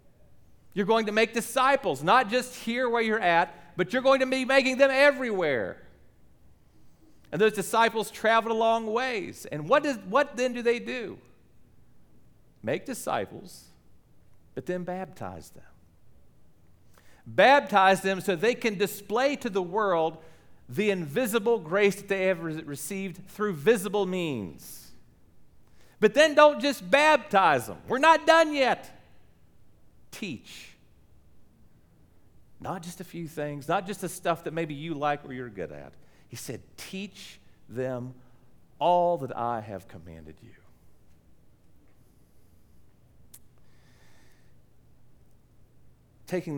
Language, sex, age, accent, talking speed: English, male, 40-59, American, 125 wpm